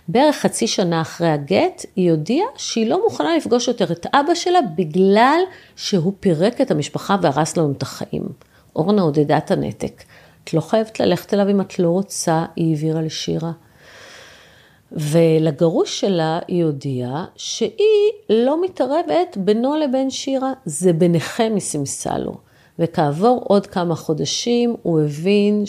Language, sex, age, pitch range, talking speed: Hebrew, female, 40-59, 160-220 Hz, 140 wpm